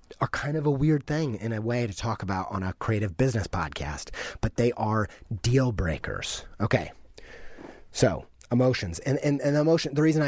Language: English